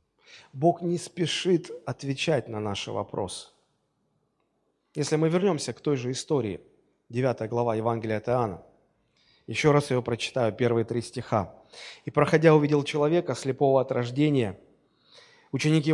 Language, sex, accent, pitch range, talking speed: Russian, male, native, 120-170 Hz, 130 wpm